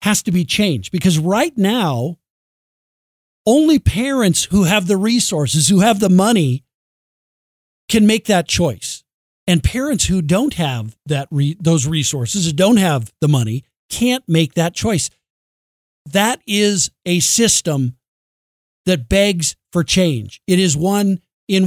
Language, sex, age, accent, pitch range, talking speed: English, male, 50-69, American, 150-205 Hz, 140 wpm